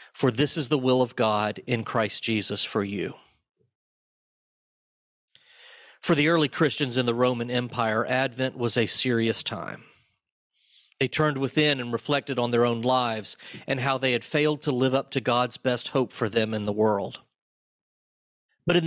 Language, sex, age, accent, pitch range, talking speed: English, male, 40-59, American, 120-150 Hz, 170 wpm